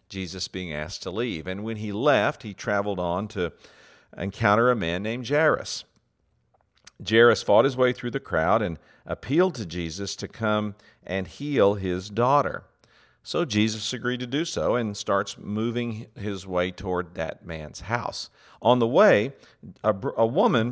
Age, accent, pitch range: 50-69, American, 95-125 Hz